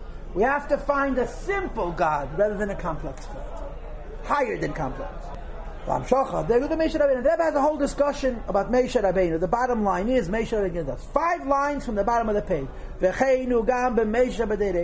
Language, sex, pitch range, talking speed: English, male, 175-235 Hz, 155 wpm